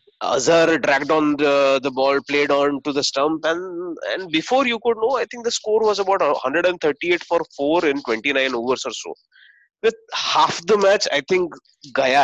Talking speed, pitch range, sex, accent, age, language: 185 wpm, 145-230 Hz, male, Indian, 30-49, English